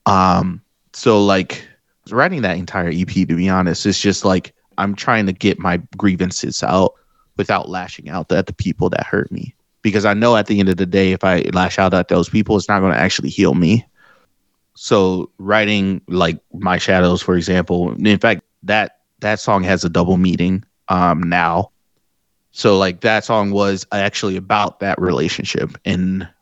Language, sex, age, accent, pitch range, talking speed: English, male, 30-49, American, 90-105 Hz, 180 wpm